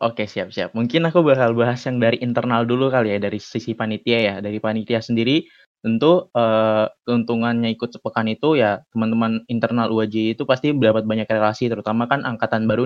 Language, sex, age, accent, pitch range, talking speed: Indonesian, male, 20-39, native, 110-125 Hz, 180 wpm